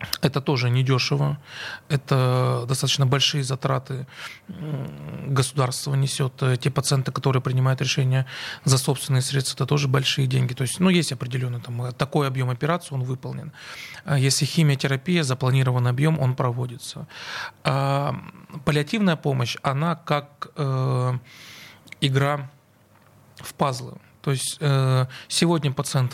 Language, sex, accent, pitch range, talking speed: Russian, male, native, 130-150 Hz, 115 wpm